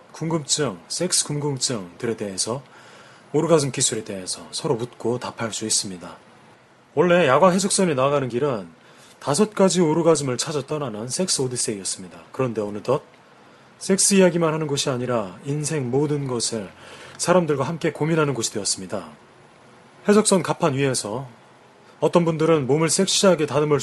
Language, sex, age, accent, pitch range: Korean, male, 30-49, native, 115-160 Hz